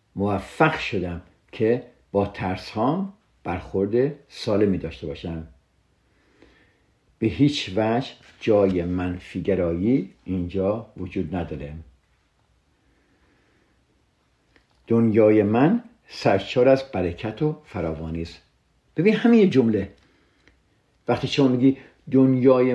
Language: Persian